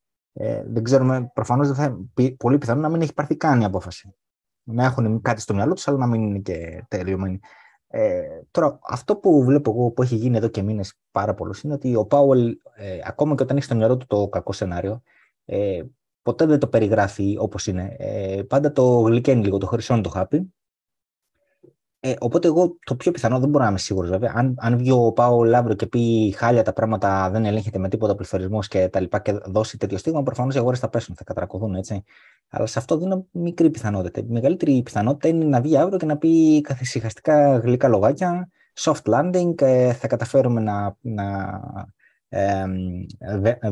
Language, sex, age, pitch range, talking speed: Greek, male, 20-39, 105-140 Hz, 185 wpm